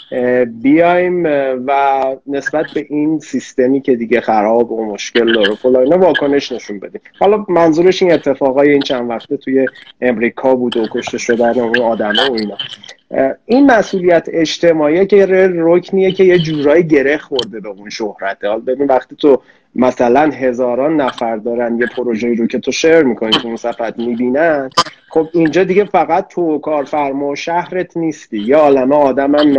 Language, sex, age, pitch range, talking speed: Persian, male, 30-49, 125-170 Hz, 155 wpm